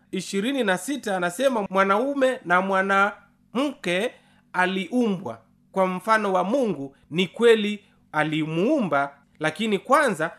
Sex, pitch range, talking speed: male, 175-235 Hz, 85 wpm